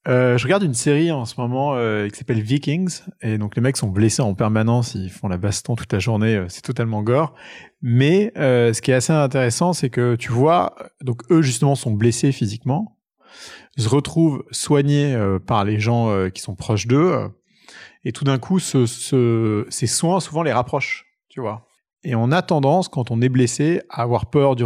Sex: male